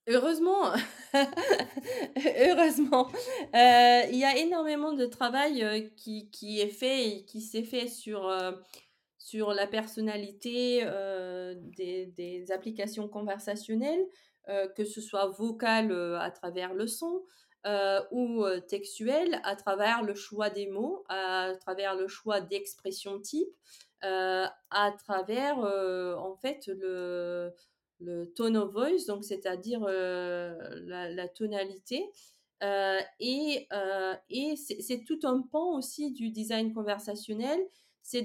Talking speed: 130 wpm